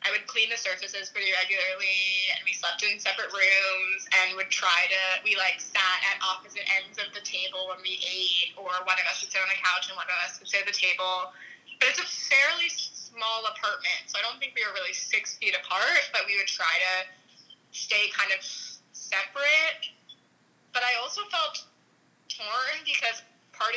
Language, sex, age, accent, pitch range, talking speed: English, female, 20-39, American, 190-245 Hz, 200 wpm